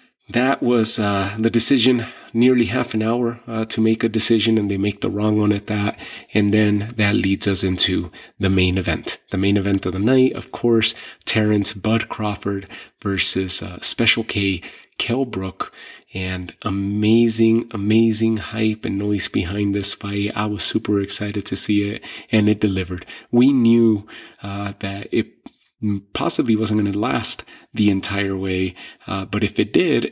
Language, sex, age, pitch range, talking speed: English, male, 30-49, 100-110 Hz, 170 wpm